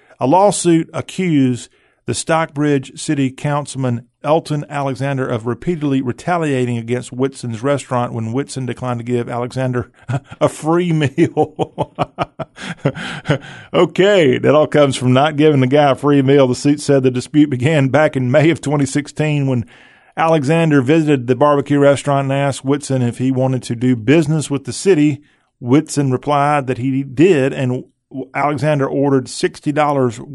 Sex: male